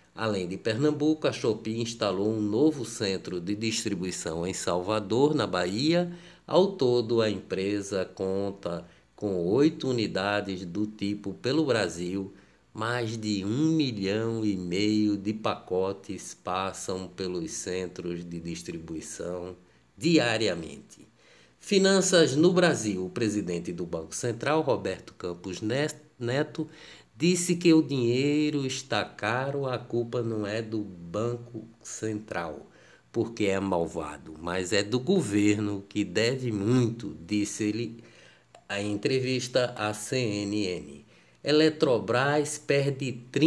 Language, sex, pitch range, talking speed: Portuguese, male, 95-130 Hz, 115 wpm